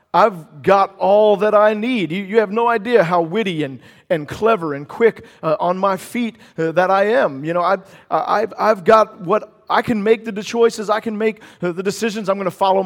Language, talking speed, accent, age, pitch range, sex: English, 225 wpm, American, 40-59, 155-215 Hz, male